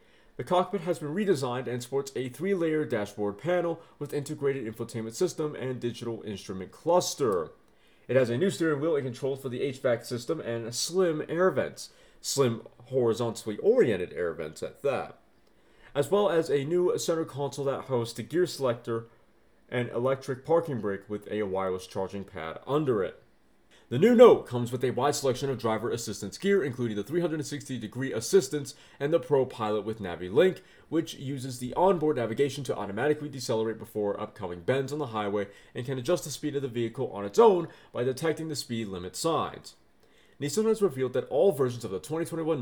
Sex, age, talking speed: male, 30-49, 180 wpm